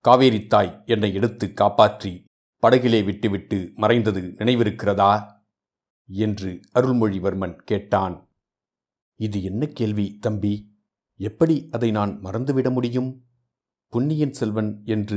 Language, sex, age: Tamil, male, 50-69